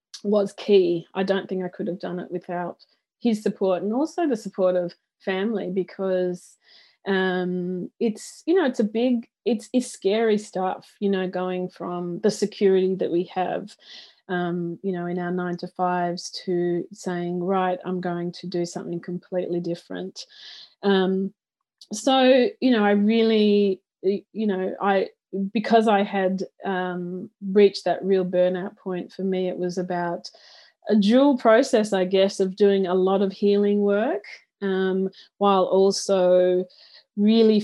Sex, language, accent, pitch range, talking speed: female, English, Australian, 180-205 Hz, 155 wpm